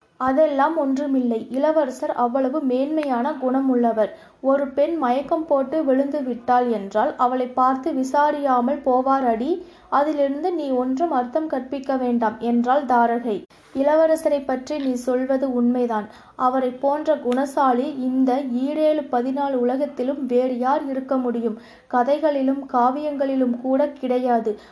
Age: 20-39